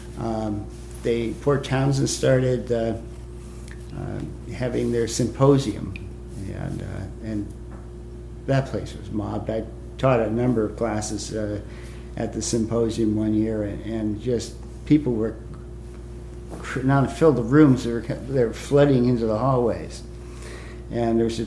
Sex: male